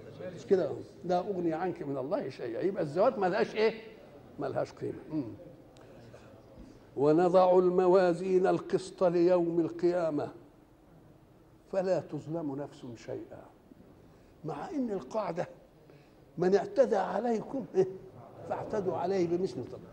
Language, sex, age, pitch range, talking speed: Arabic, male, 60-79, 165-205 Hz, 95 wpm